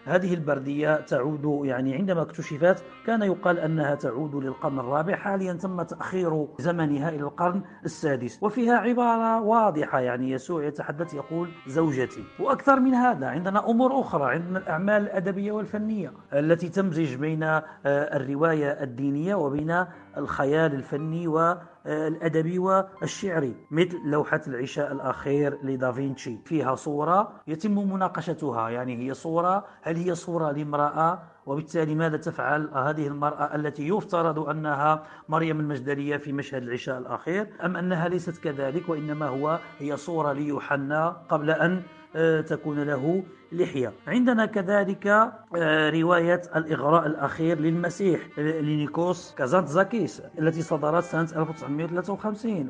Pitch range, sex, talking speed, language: 145-180 Hz, male, 115 wpm, Arabic